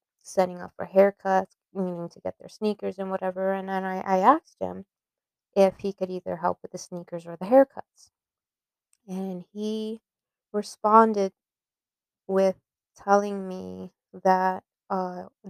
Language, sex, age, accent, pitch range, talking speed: English, female, 20-39, American, 170-205 Hz, 140 wpm